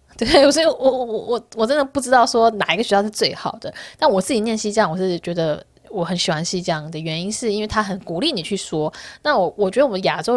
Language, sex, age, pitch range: Chinese, female, 20-39, 180-265 Hz